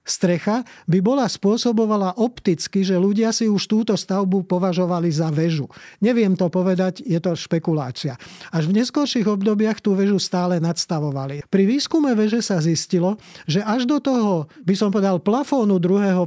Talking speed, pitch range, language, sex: 155 wpm, 175-215 Hz, Slovak, male